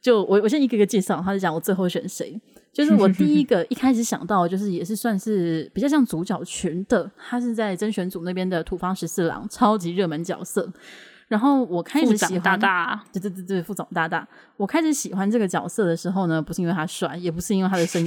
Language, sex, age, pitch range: Chinese, female, 20-39, 175-235 Hz